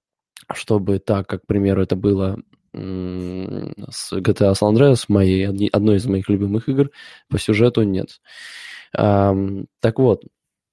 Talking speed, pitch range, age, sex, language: 115 wpm, 95-115 Hz, 20-39, male, Russian